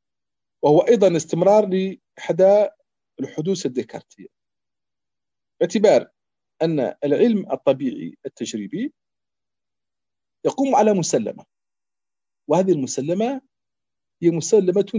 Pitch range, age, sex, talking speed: 130-215 Hz, 40-59, male, 70 wpm